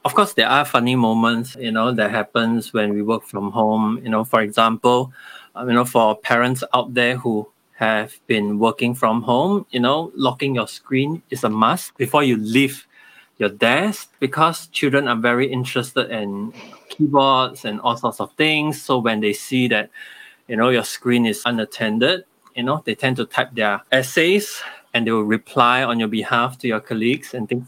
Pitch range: 115-140 Hz